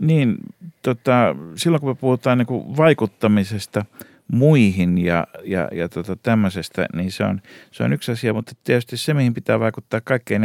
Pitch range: 90-115 Hz